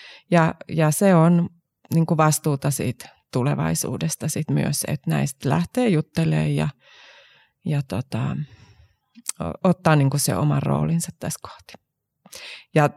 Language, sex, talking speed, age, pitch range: Finnish, female, 105 wpm, 30-49, 140-175 Hz